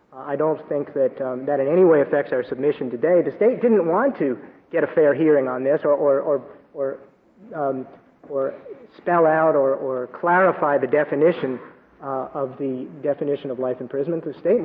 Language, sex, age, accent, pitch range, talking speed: English, male, 40-59, American, 130-160 Hz, 190 wpm